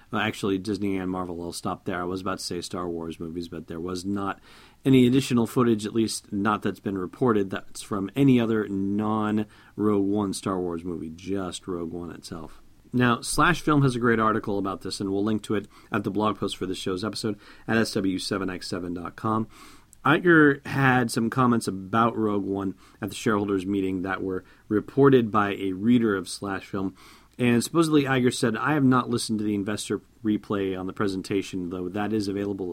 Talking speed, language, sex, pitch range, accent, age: 190 wpm, English, male, 100-125 Hz, American, 40-59